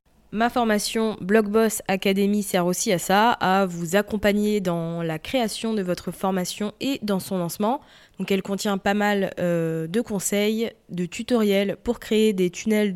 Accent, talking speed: French, 160 wpm